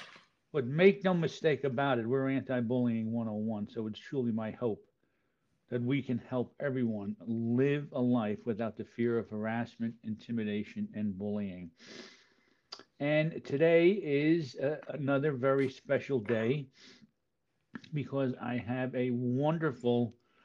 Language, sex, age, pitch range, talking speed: English, male, 50-69, 115-135 Hz, 125 wpm